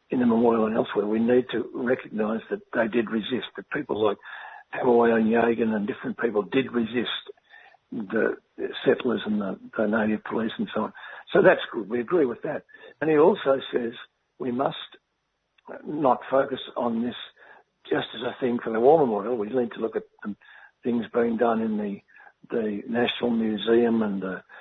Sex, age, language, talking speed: male, 60-79, English, 180 wpm